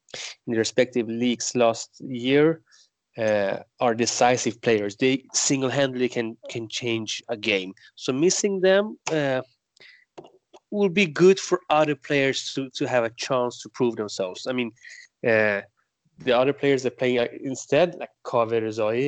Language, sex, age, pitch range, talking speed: English, male, 30-49, 120-165 Hz, 150 wpm